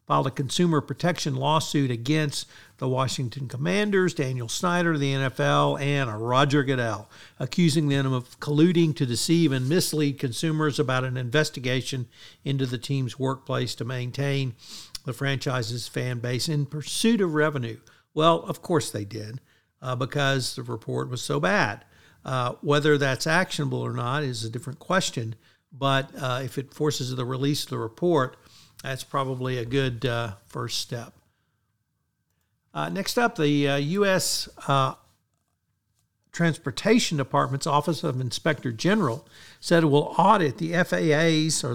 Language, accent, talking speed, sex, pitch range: English, American, 145 wpm, male, 125-155 Hz